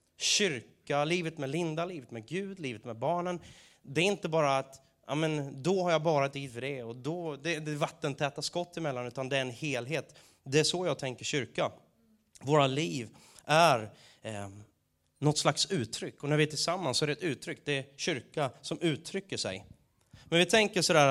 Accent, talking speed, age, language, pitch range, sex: native, 195 wpm, 30-49, Swedish, 140-190 Hz, male